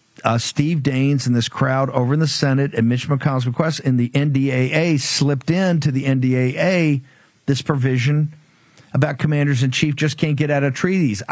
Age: 50-69